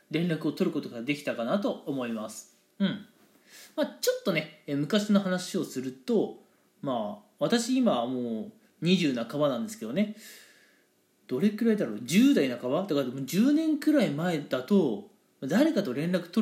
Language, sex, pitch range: Japanese, male, 160-240 Hz